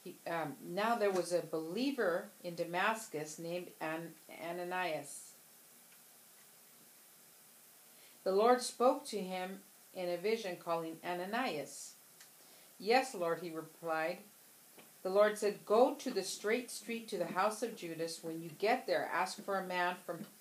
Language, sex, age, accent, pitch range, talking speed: English, female, 50-69, American, 165-200 Hz, 135 wpm